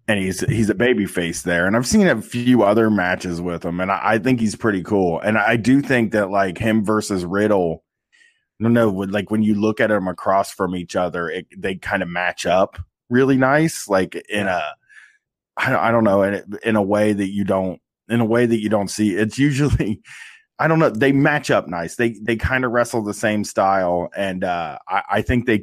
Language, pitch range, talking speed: English, 95-125 Hz, 230 wpm